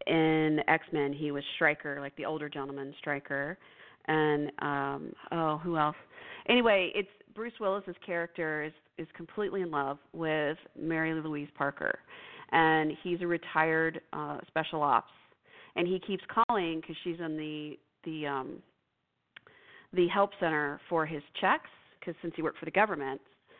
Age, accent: 40-59, American